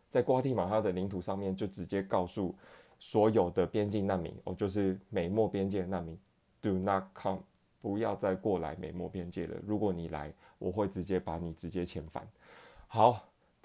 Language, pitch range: Chinese, 90-105 Hz